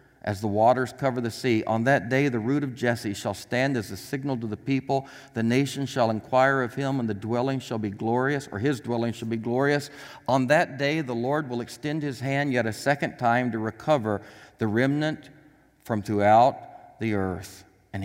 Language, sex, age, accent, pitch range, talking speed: English, male, 60-79, American, 110-140 Hz, 205 wpm